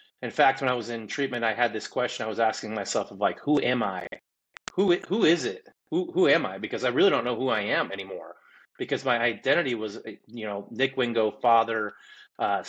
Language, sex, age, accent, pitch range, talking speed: English, male, 30-49, American, 110-135 Hz, 220 wpm